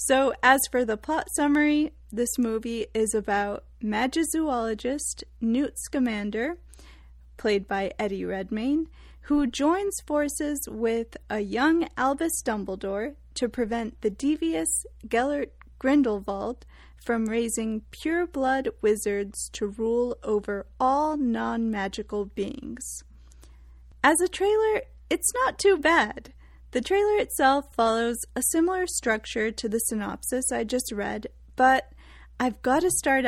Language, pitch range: English, 215-290 Hz